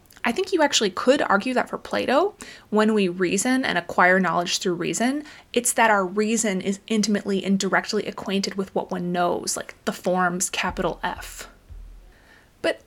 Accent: American